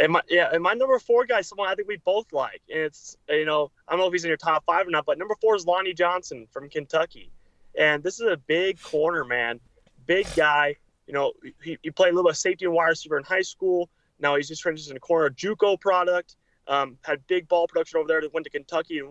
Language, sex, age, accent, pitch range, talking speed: English, male, 20-39, American, 150-210 Hz, 260 wpm